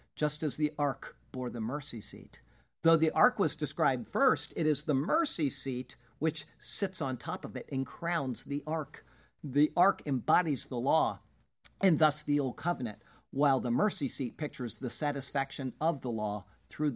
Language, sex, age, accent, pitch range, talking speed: English, male, 50-69, American, 125-160 Hz, 175 wpm